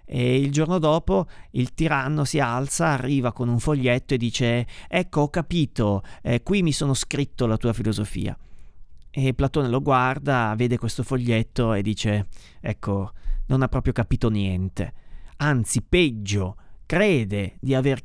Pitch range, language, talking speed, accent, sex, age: 110-165 Hz, Italian, 150 wpm, native, male, 30-49